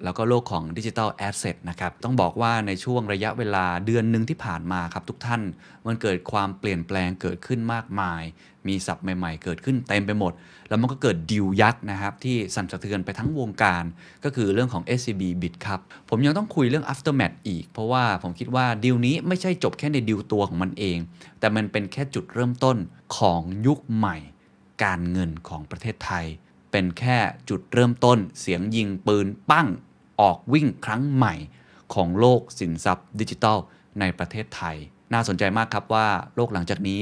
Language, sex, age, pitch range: Thai, male, 20-39, 90-120 Hz